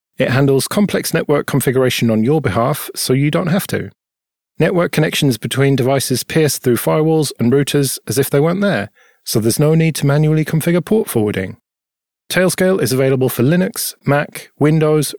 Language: English